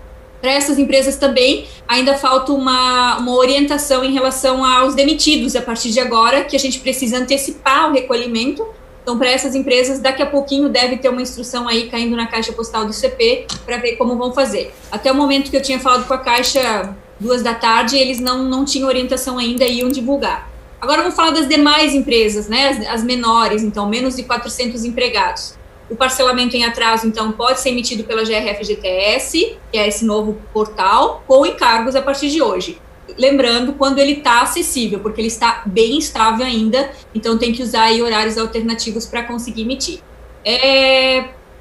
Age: 20-39